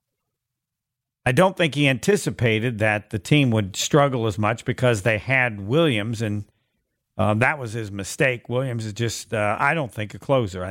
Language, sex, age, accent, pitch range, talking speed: English, male, 50-69, American, 115-180 Hz, 180 wpm